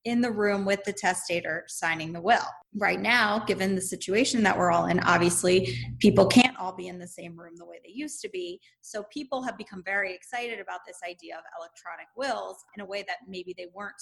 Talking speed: 225 wpm